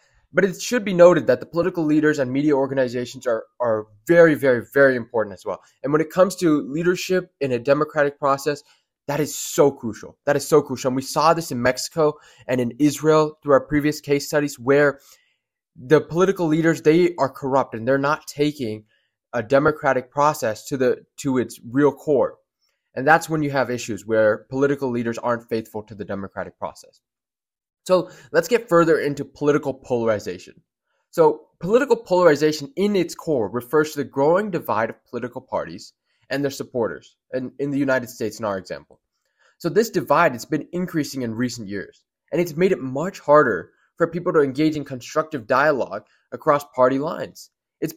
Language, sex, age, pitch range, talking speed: English, male, 20-39, 130-170 Hz, 180 wpm